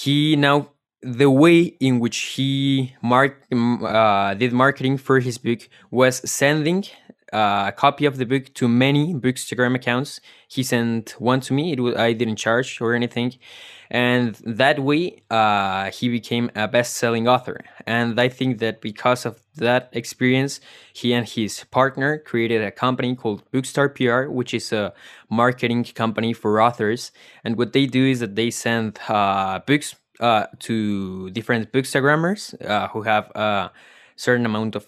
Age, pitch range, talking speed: 20-39, 115-130 Hz, 160 wpm